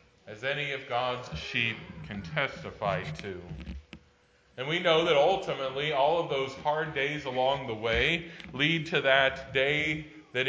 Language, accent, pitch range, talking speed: English, American, 110-140 Hz, 150 wpm